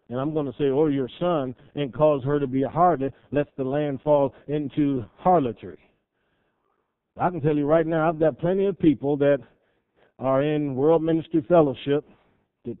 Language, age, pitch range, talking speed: English, 50-69, 135-180 Hz, 190 wpm